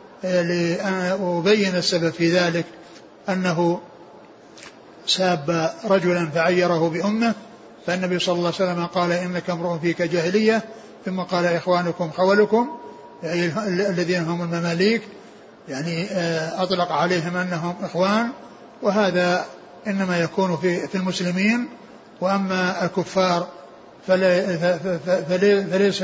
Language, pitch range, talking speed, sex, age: Arabic, 175-195 Hz, 95 wpm, male, 60-79